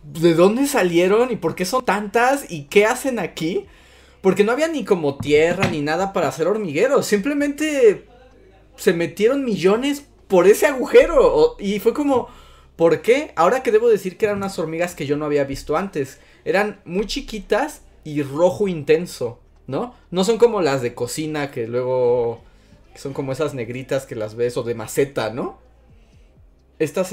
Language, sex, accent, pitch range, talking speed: Spanish, male, Mexican, 140-235 Hz, 170 wpm